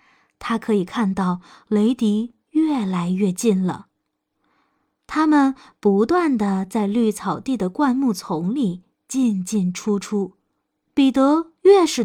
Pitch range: 195-285 Hz